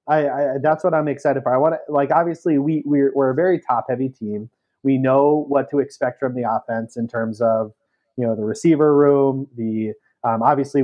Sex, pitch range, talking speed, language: male, 115-140 Hz, 205 wpm, English